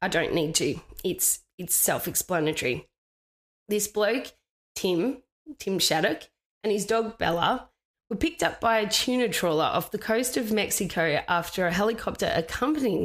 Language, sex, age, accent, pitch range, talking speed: English, female, 20-39, Australian, 180-220 Hz, 145 wpm